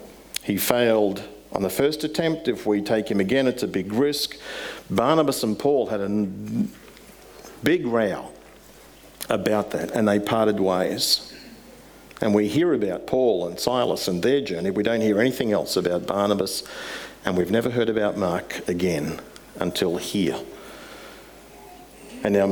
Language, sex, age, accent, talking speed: English, male, 50-69, Australian, 150 wpm